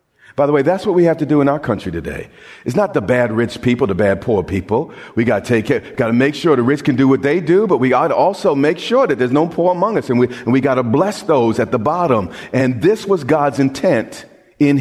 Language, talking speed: English, 280 wpm